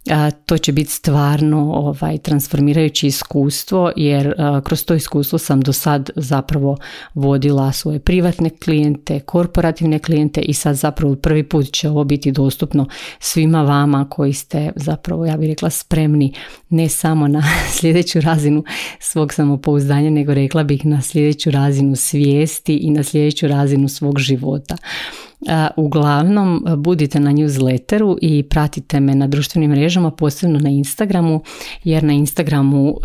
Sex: female